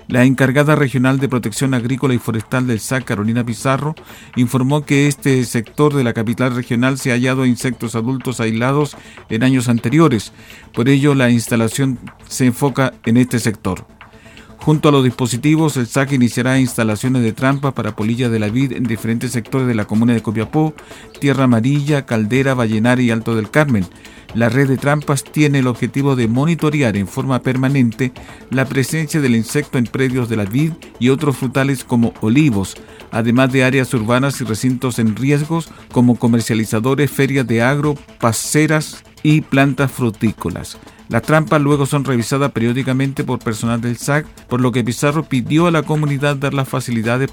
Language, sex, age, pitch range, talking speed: Spanish, male, 50-69, 115-140 Hz, 170 wpm